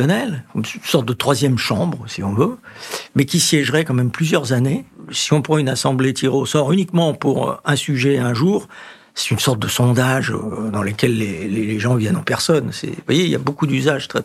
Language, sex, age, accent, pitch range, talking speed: French, male, 60-79, French, 110-155 Hz, 215 wpm